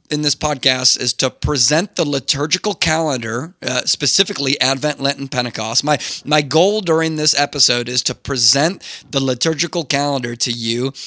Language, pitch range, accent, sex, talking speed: English, 135-170 Hz, American, male, 155 wpm